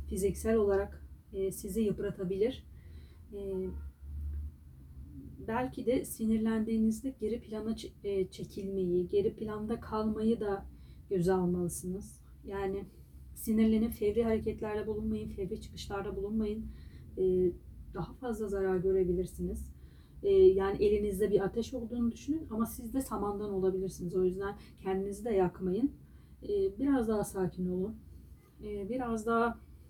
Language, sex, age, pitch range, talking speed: Turkish, female, 40-59, 185-230 Hz, 100 wpm